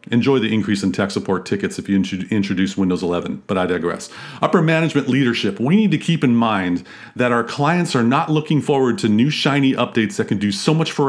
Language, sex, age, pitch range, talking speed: English, male, 40-59, 105-145 Hz, 220 wpm